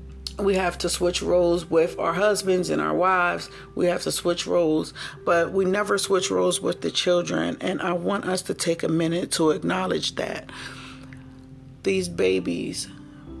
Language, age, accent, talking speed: English, 40-59, American, 165 wpm